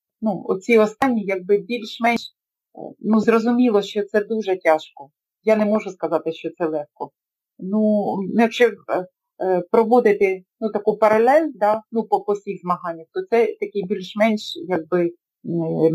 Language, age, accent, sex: Ukrainian, 30-49, native, female